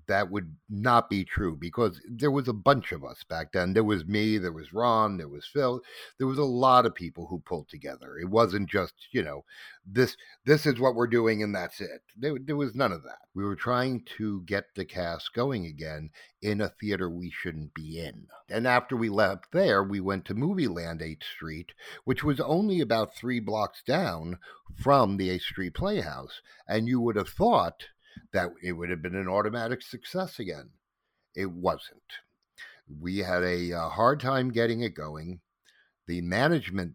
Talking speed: 195 wpm